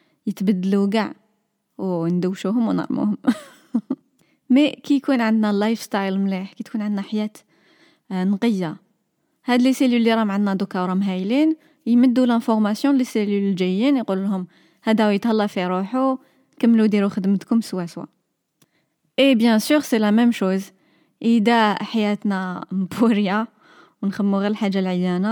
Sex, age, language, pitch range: female, 20-39, Arabic, 195-250 Hz